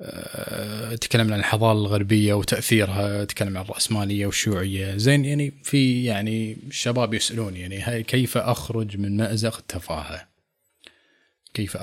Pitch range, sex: 100-120 Hz, male